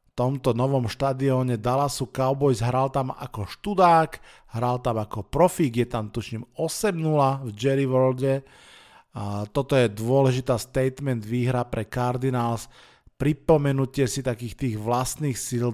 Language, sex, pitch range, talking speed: Slovak, male, 120-140 Hz, 130 wpm